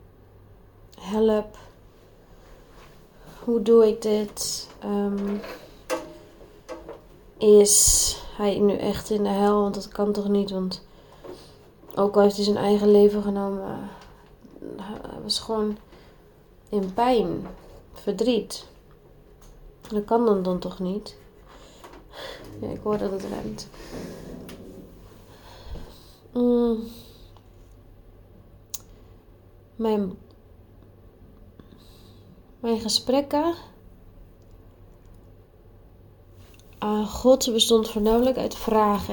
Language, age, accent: English, 30-49, Dutch